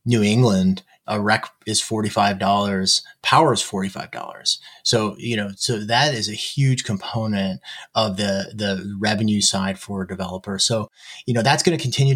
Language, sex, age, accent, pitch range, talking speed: English, male, 30-49, American, 100-130 Hz, 160 wpm